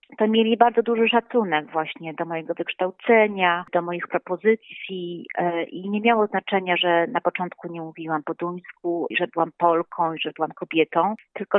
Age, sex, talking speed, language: 30-49, female, 160 wpm, Polish